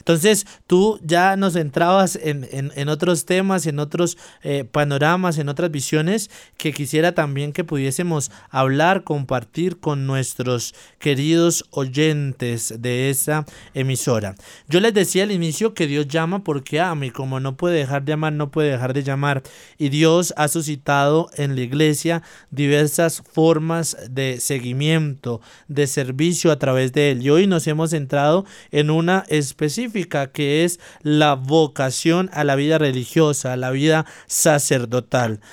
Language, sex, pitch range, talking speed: Spanish, male, 140-170 Hz, 150 wpm